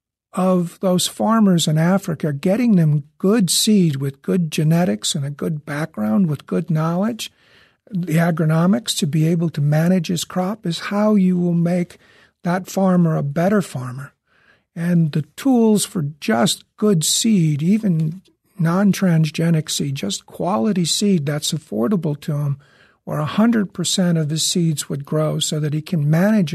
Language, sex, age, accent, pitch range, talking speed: English, male, 50-69, American, 155-190 Hz, 150 wpm